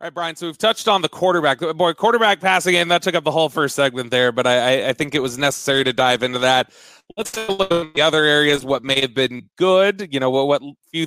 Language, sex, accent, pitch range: English, male, American, 130-170 Hz